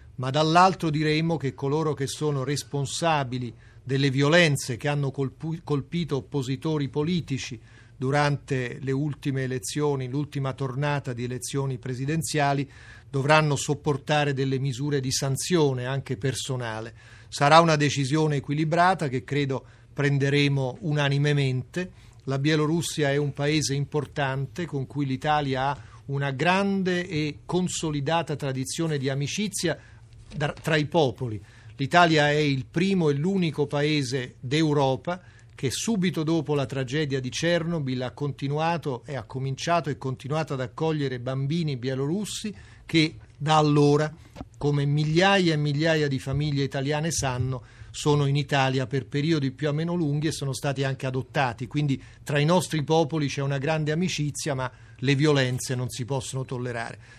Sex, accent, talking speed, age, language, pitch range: male, native, 135 wpm, 40-59, Italian, 130-155 Hz